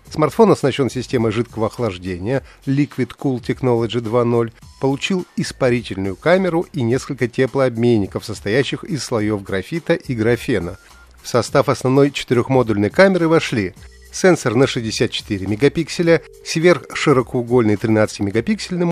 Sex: male